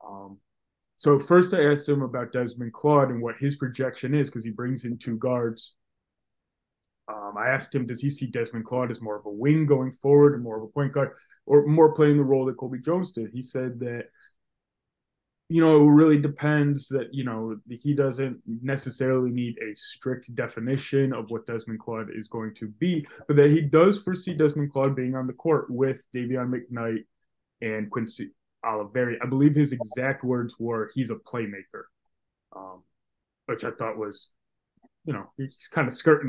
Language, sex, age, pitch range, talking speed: English, male, 20-39, 115-145 Hz, 190 wpm